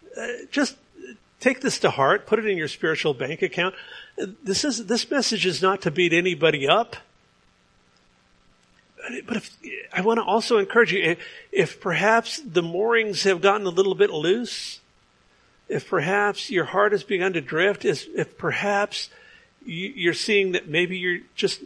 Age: 50-69